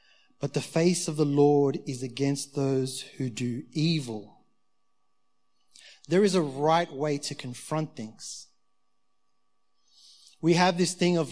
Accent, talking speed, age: Australian, 135 wpm, 30-49